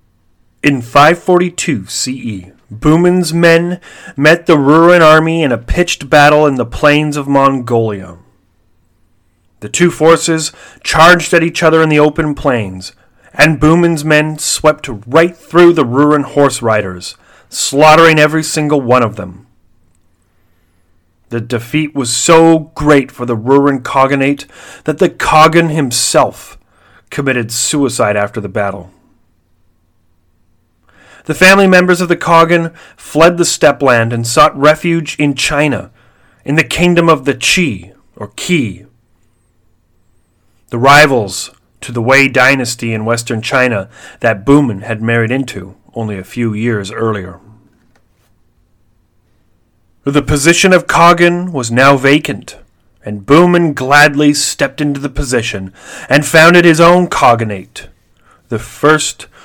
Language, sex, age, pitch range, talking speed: English, male, 30-49, 105-155 Hz, 125 wpm